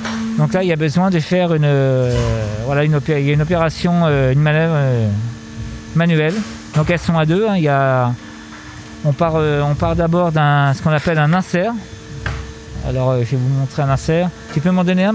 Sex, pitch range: male, 115-170 Hz